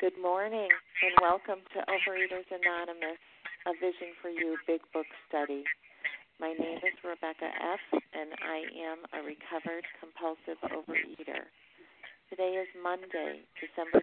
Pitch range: 150-180 Hz